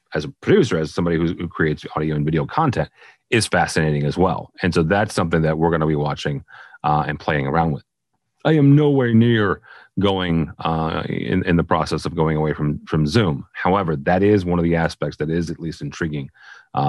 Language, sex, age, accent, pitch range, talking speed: English, male, 30-49, American, 80-100 Hz, 215 wpm